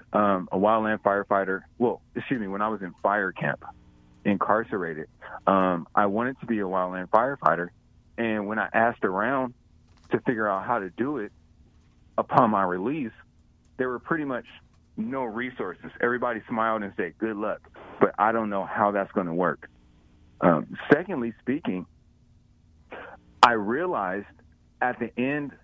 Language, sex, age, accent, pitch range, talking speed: English, male, 30-49, American, 95-120 Hz, 150 wpm